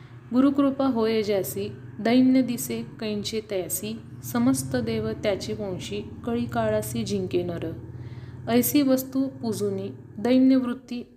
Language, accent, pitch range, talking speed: Marathi, native, 185-245 Hz, 95 wpm